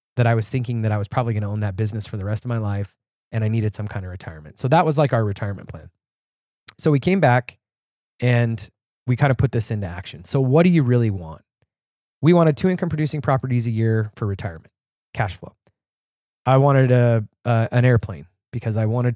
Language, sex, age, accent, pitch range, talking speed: English, male, 20-39, American, 105-130 Hz, 220 wpm